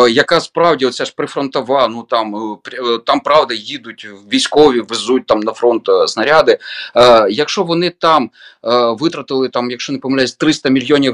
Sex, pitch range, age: male, 125-205 Hz, 30-49